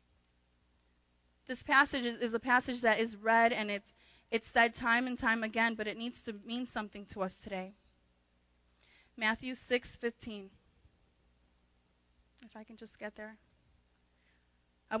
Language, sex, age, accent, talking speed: English, female, 20-39, American, 135 wpm